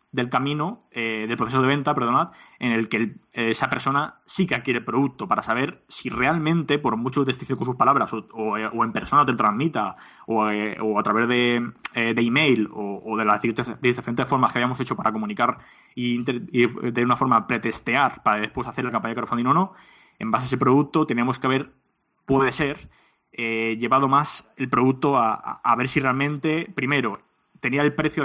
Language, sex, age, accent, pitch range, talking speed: Spanish, male, 20-39, Spanish, 115-135 Hz, 210 wpm